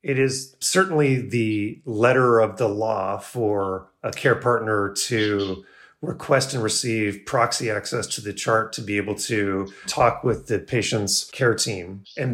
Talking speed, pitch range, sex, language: 155 wpm, 110-135 Hz, male, English